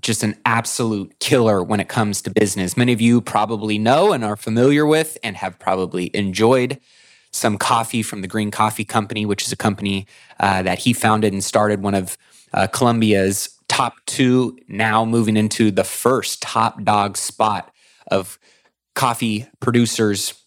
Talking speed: 165 wpm